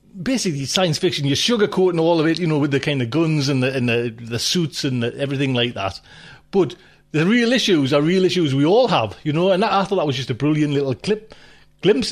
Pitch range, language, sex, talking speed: 130-185 Hz, English, male, 245 wpm